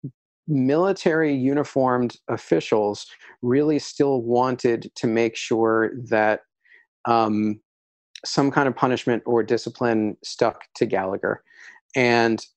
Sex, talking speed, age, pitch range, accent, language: male, 100 wpm, 40-59, 110-140 Hz, American, English